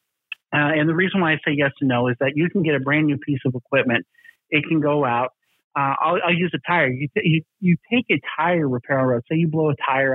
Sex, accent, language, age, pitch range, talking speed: male, American, English, 50-69, 140-180 Hz, 255 wpm